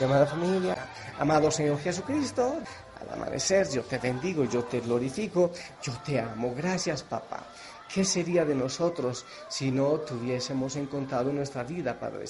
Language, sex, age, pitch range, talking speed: Spanish, male, 40-59, 125-170 Hz, 140 wpm